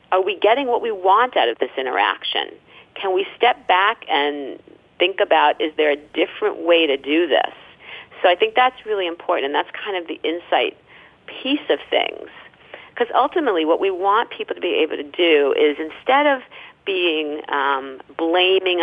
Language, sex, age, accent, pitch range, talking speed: English, female, 40-59, American, 150-240 Hz, 180 wpm